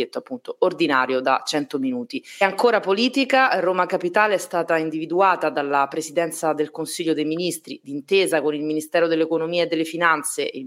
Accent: native